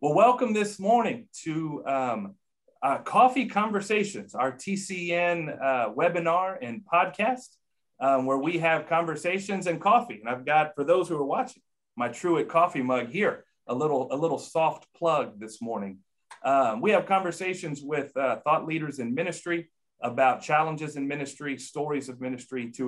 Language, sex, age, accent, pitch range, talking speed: English, male, 40-59, American, 125-170 Hz, 155 wpm